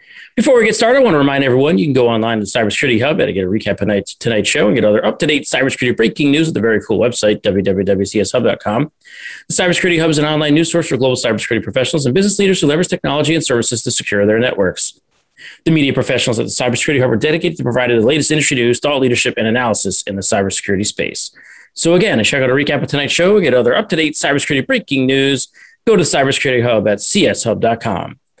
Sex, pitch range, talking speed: male, 110-145 Hz, 225 wpm